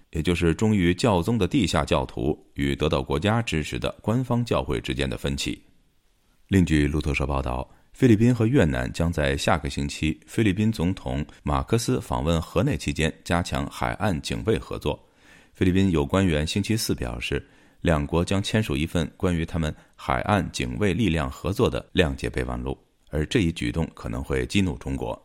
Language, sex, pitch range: Chinese, male, 70-95 Hz